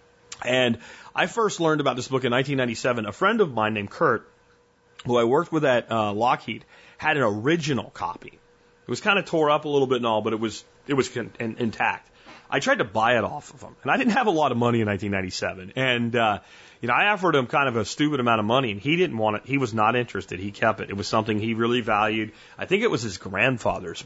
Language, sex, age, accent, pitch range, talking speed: English, male, 30-49, American, 115-155 Hz, 250 wpm